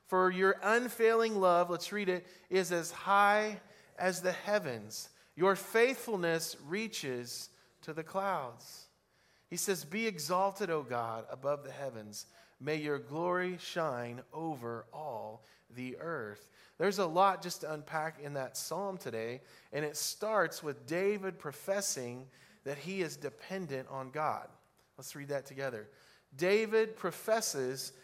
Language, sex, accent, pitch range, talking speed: English, male, American, 150-200 Hz, 135 wpm